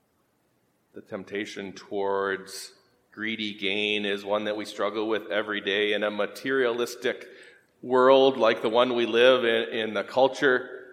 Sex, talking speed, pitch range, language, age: male, 145 wpm, 95-120 Hz, English, 40-59